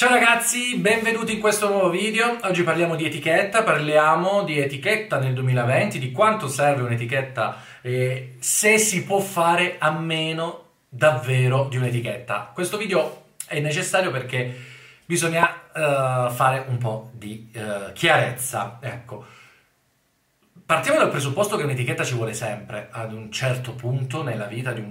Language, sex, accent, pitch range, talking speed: Italian, male, native, 125-175 Hz, 140 wpm